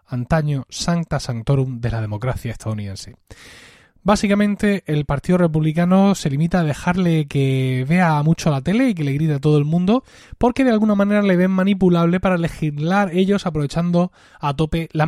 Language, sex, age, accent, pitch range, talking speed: Spanish, male, 20-39, Spanish, 140-185 Hz, 165 wpm